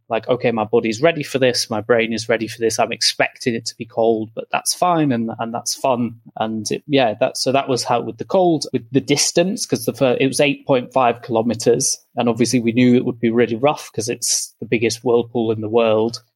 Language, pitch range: English, 115-130 Hz